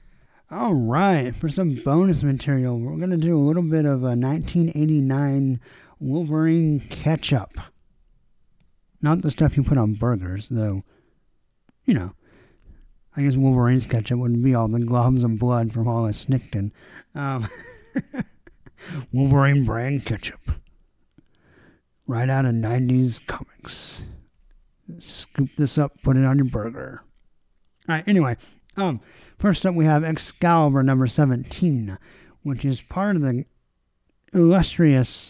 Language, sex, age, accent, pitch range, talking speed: English, male, 50-69, American, 120-155 Hz, 125 wpm